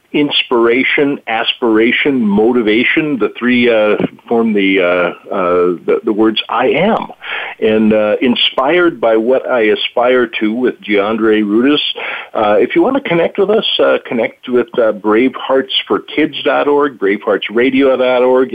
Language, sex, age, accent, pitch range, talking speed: English, male, 50-69, American, 100-165 Hz, 125 wpm